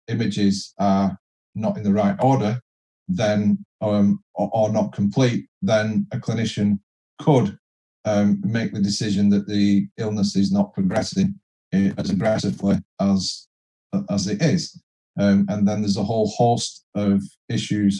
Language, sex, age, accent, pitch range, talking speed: English, male, 40-59, British, 100-115 Hz, 140 wpm